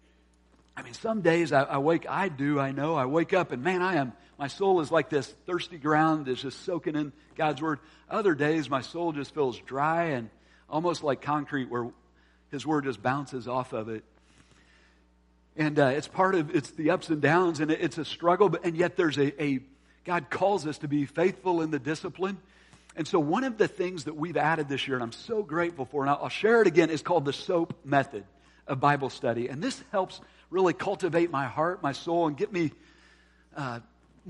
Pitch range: 140-180 Hz